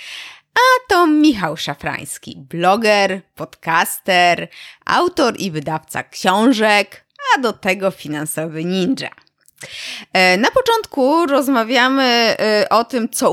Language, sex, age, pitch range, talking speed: Polish, female, 20-39, 185-275 Hz, 95 wpm